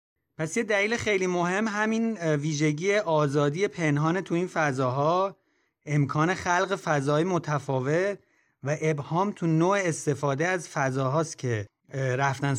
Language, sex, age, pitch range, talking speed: Persian, male, 30-49, 130-170 Hz, 120 wpm